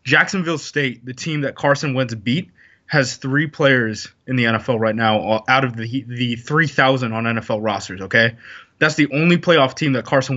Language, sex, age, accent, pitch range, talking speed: English, male, 20-39, American, 120-150 Hz, 190 wpm